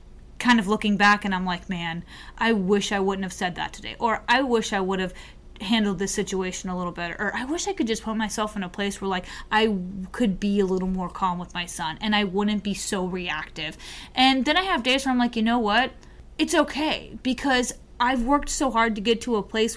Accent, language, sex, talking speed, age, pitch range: American, English, female, 245 wpm, 20-39, 200-255 Hz